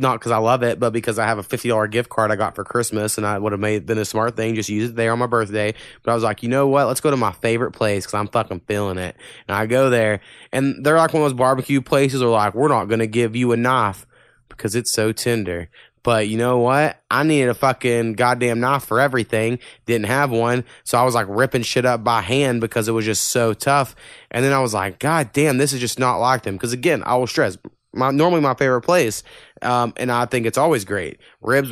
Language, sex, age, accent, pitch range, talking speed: English, male, 20-39, American, 110-130 Hz, 260 wpm